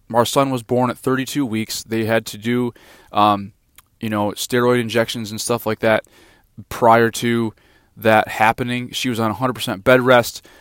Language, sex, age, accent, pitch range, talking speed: English, male, 20-39, American, 110-130 Hz, 170 wpm